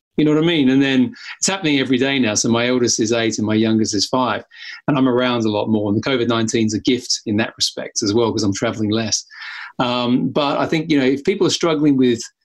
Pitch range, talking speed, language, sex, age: 115-140 Hz, 260 wpm, English, male, 30-49